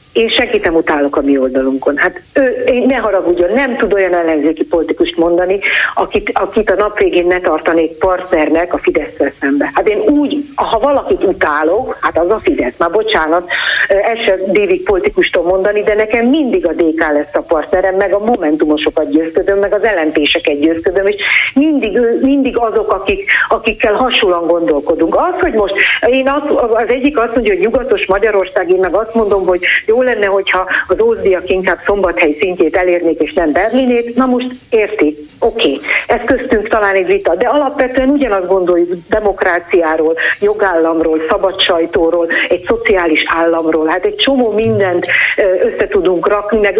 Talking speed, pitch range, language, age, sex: 160 wpm, 170-255 Hz, Hungarian, 50-69, female